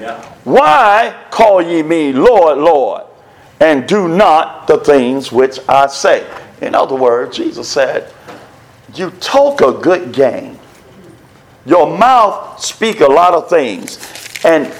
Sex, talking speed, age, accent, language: male, 130 wpm, 50-69, American, English